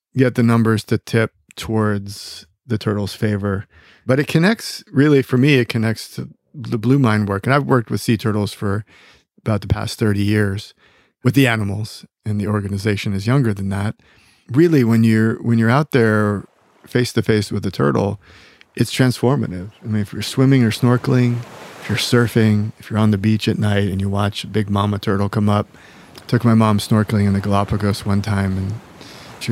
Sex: male